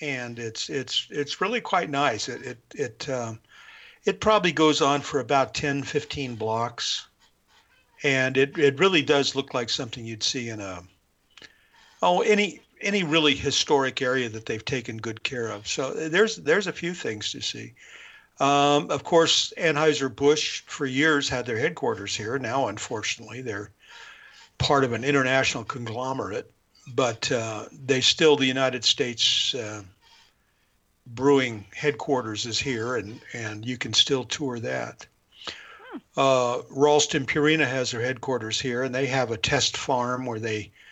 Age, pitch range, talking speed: 50-69, 115-145 Hz, 155 wpm